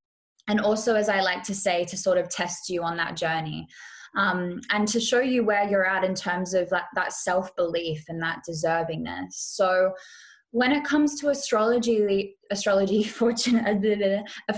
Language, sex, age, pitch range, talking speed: English, female, 10-29, 185-230 Hz, 160 wpm